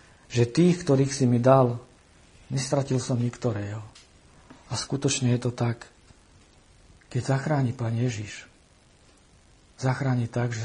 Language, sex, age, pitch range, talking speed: Slovak, male, 50-69, 110-130 Hz, 120 wpm